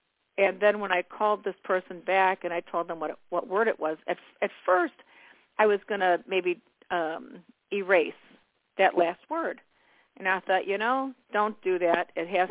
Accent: American